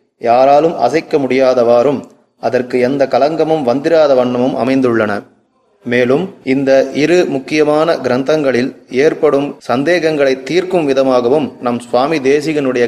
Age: 30-49